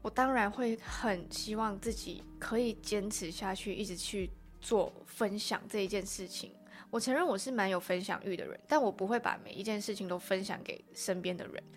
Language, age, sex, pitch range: Chinese, 20-39, female, 185-220 Hz